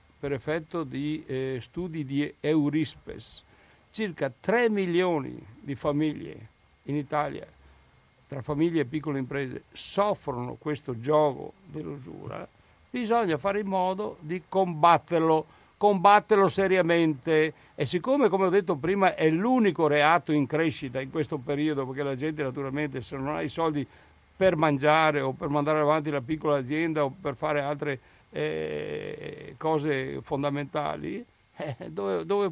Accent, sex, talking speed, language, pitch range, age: native, male, 135 wpm, Italian, 140-170 Hz, 60-79